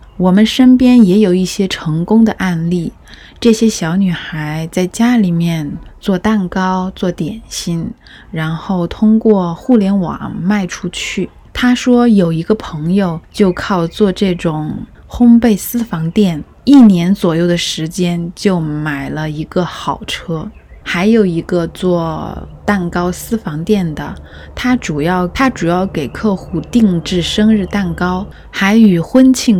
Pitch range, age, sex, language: 170-220 Hz, 20-39, female, Chinese